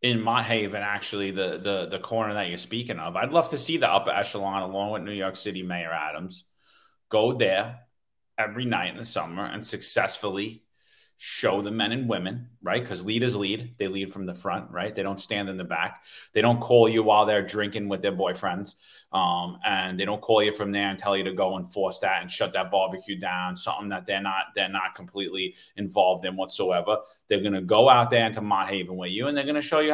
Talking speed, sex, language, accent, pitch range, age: 225 wpm, male, English, American, 95-120 Hz, 30-49